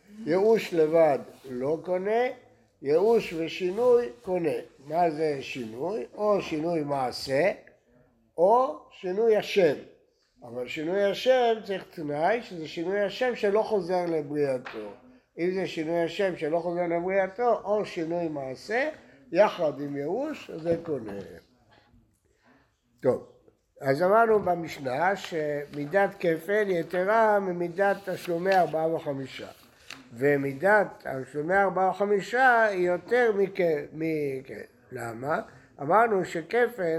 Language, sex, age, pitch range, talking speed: Hebrew, male, 60-79, 145-210 Hz, 100 wpm